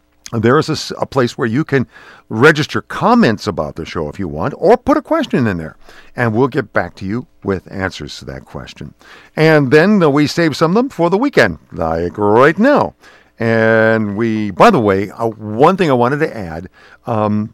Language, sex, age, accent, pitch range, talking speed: English, male, 50-69, American, 90-120 Hz, 200 wpm